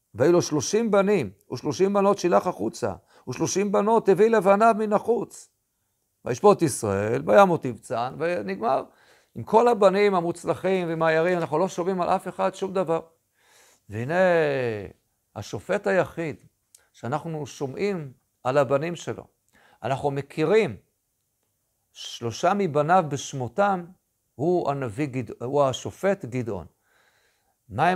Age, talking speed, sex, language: 50-69, 110 wpm, male, Hebrew